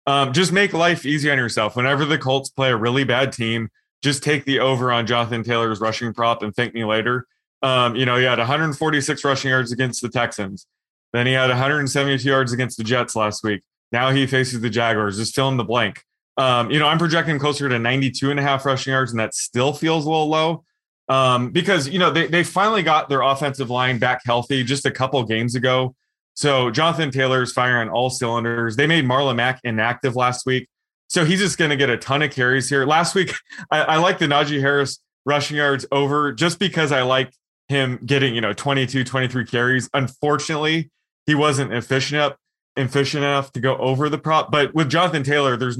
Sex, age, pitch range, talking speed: male, 20-39, 120-145 Hz, 210 wpm